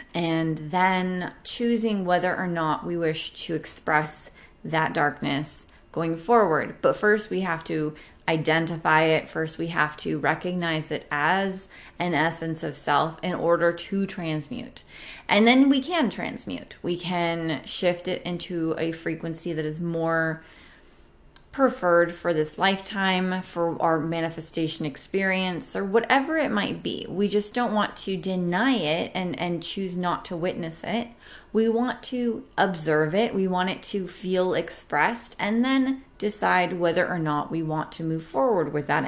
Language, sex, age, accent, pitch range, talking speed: English, female, 20-39, American, 160-215 Hz, 155 wpm